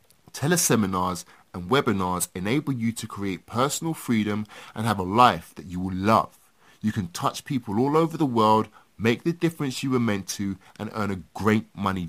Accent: British